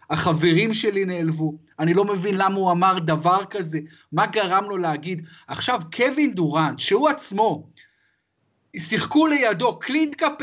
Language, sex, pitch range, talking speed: Hebrew, male, 185-255 Hz, 130 wpm